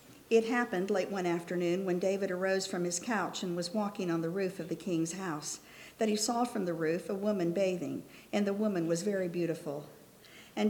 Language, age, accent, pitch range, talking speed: English, 50-69, American, 175-235 Hz, 210 wpm